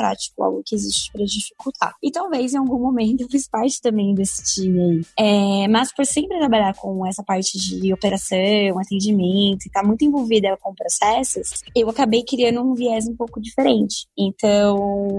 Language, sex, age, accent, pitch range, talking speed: Portuguese, female, 10-29, Brazilian, 190-235 Hz, 170 wpm